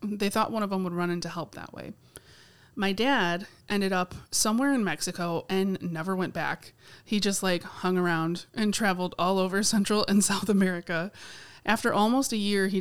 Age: 30-49